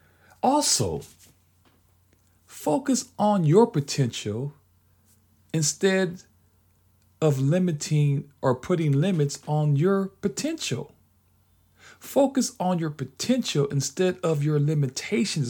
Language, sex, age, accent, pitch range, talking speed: English, male, 40-59, American, 120-195 Hz, 85 wpm